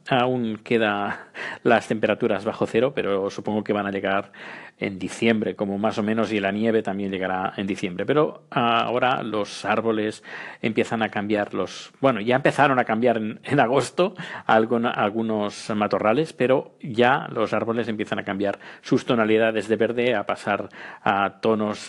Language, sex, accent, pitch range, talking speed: Spanish, male, Spanish, 105-120 Hz, 160 wpm